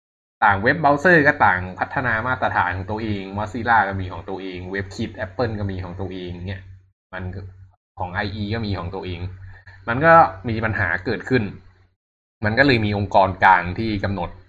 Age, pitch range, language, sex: 20-39, 95-110 Hz, Thai, male